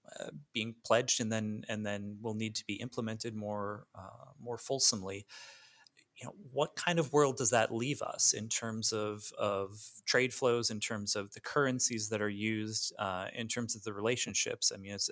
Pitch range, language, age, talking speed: 105-130 Hz, English, 30-49, 195 wpm